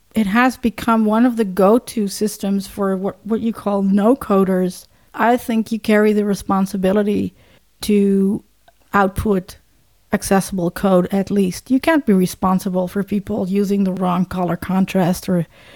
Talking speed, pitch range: 150 wpm, 195-225 Hz